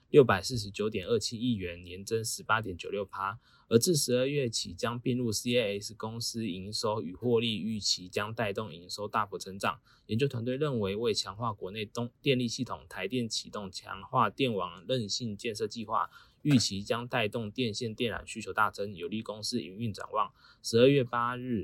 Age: 20-39